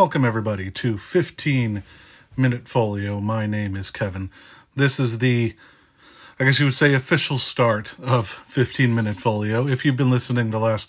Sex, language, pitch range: male, English, 110-150 Hz